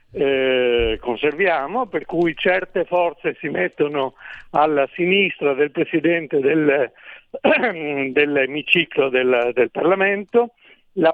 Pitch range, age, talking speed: 140-185 Hz, 60-79, 110 wpm